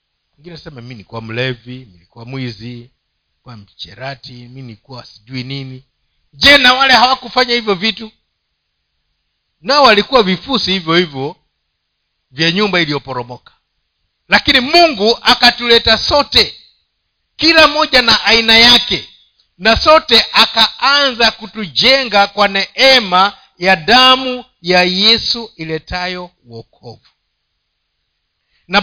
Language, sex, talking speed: Swahili, male, 100 wpm